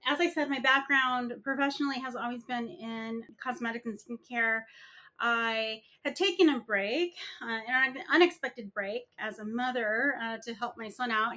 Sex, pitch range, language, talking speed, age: female, 220-265 Hz, English, 165 wpm, 30-49